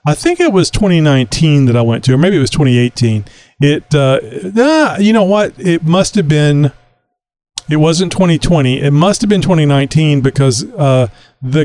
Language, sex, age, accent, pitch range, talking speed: English, male, 40-59, American, 125-160 Hz, 190 wpm